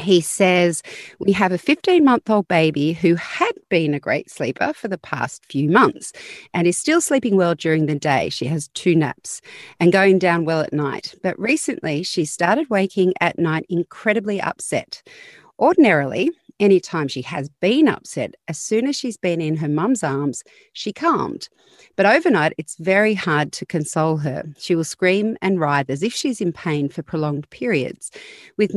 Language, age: English, 40-59